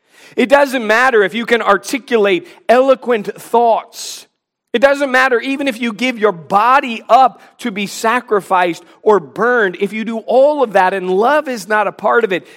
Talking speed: 180 wpm